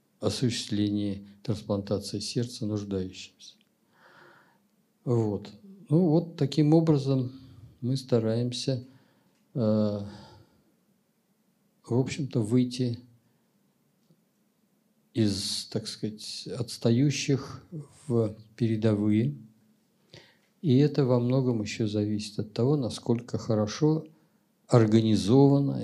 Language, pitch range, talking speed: Russian, 105-140 Hz, 70 wpm